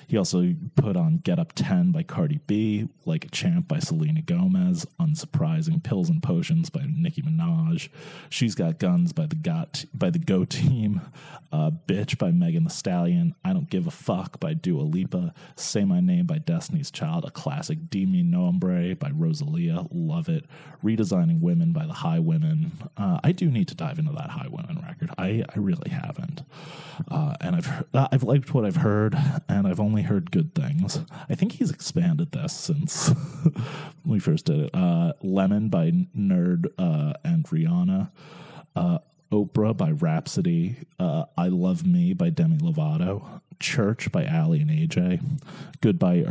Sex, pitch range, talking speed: male, 155-170 Hz, 170 wpm